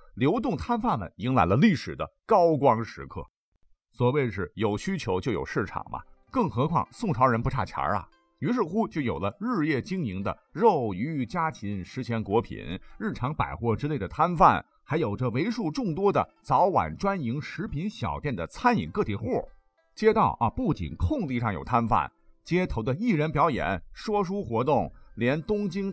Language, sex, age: Chinese, male, 50-69